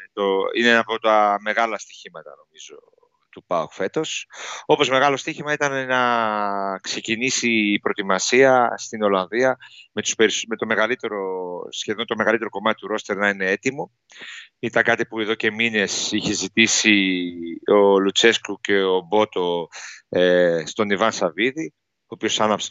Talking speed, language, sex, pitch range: 145 wpm, Greek, male, 100-130 Hz